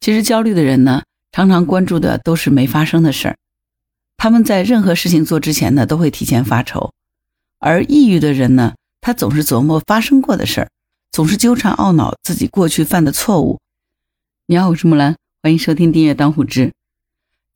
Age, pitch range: 50-69, 130-175 Hz